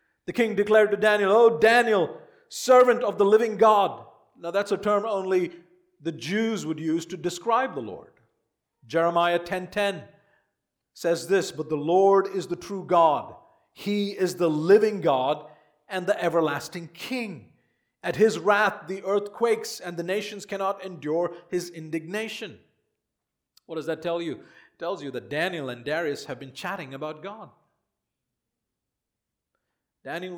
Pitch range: 150-200 Hz